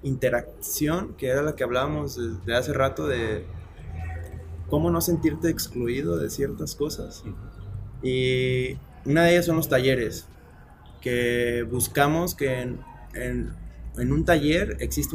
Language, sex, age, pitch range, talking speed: Spanish, male, 20-39, 120-145 Hz, 135 wpm